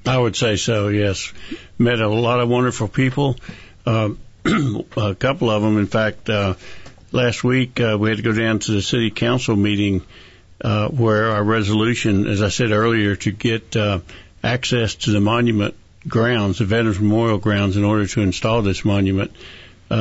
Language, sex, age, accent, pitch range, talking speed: English, male, 60-79, American, 100-115 Hz, 175 wpm